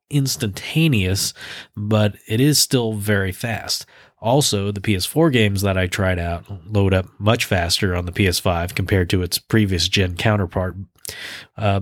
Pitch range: 95-115 Hz